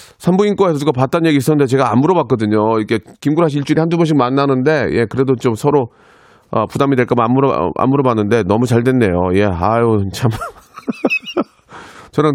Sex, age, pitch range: male, 30-49, 105-140 Hz